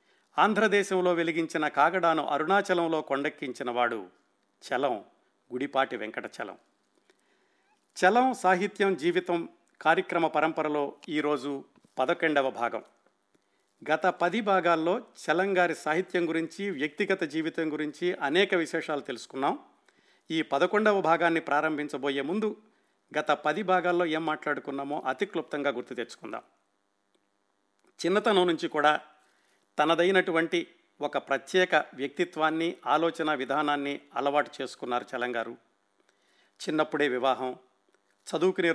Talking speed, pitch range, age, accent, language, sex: 90 wpm, 135-175 Hz, 50-69, native, Telugu, male